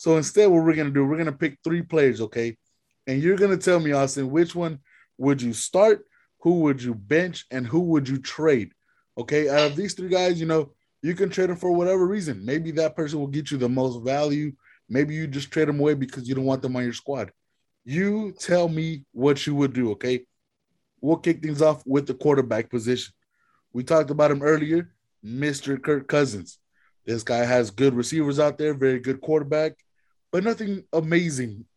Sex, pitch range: male, 125-160 Hz